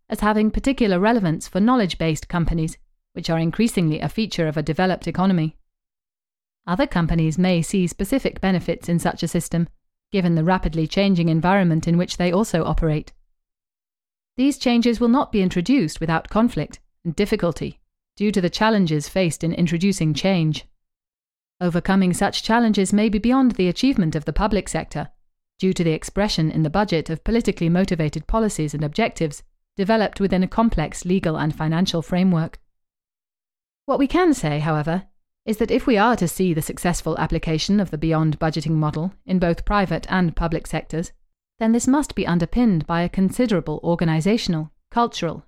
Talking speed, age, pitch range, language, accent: 160 wpm, 30-49, 160-205 Hz, English, British